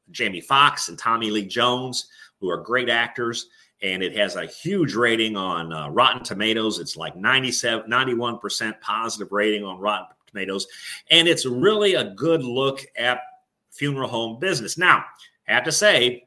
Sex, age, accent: male, 30-49, American